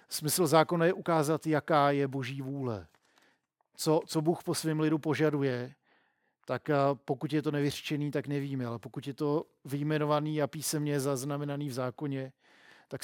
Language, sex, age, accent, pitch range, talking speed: Czech, male, 40-59, native, 130-150 Hz, 150 wpm